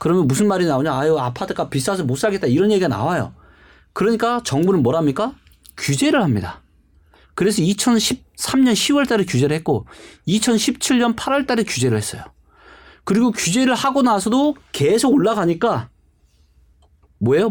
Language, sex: Korean, male